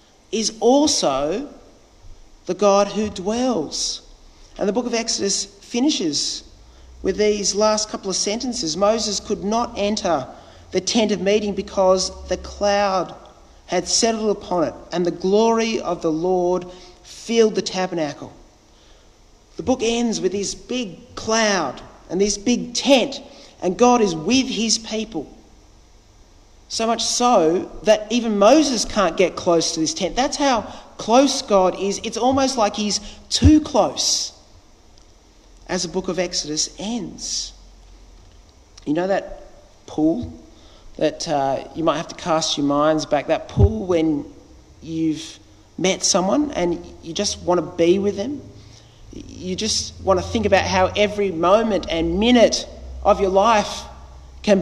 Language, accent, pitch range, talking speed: English, Australian, 160-220 Hz, 145 wpm